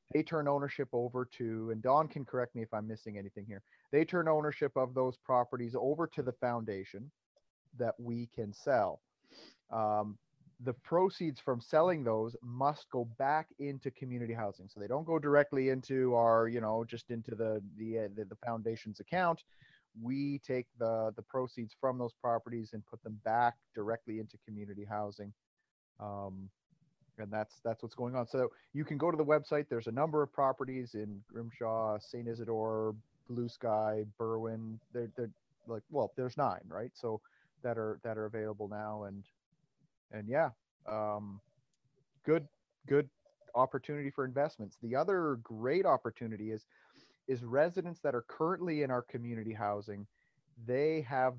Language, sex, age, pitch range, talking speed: English, male, 30-49, 110-140 Hz, 160 wpm